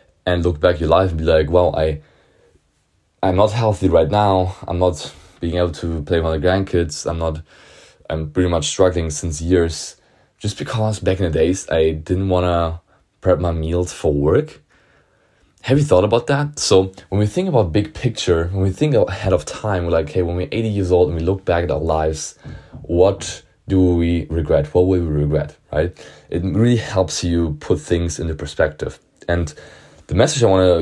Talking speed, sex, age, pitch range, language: 205 wpm, male, 20-39, 80-95 Hz, English